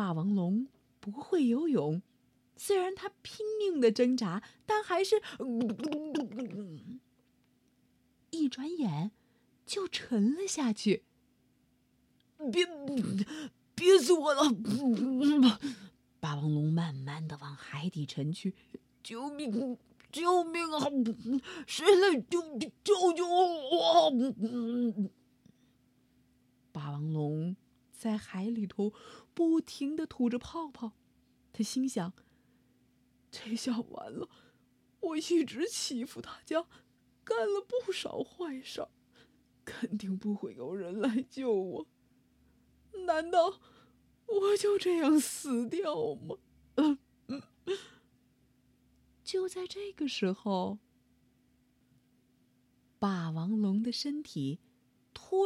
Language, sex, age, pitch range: Chinese, female, 30-49, 210-340 Hz